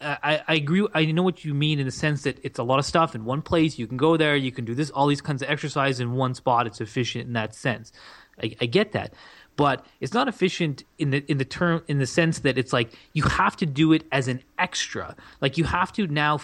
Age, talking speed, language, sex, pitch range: 30-49, 265 wpm, English, male, 130-165 Hz